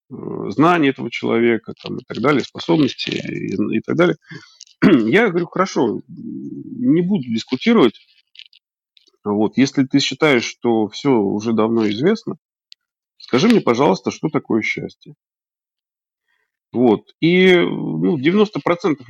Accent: native